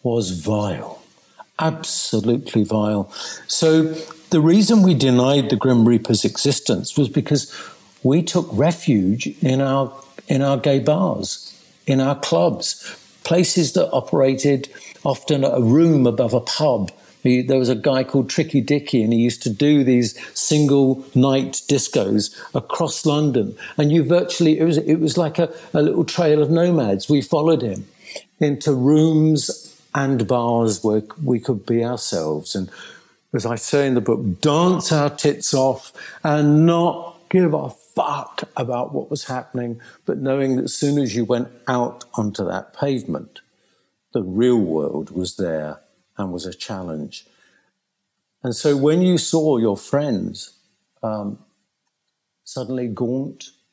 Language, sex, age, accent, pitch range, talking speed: English, male, 60-79, British, 115-150 Hz, 145 wpm